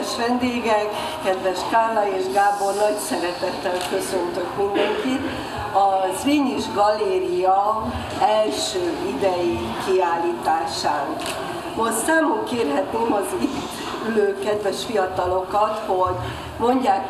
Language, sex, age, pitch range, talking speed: Hungarian, female, 50-69, 185-235 Hz, 90 wpm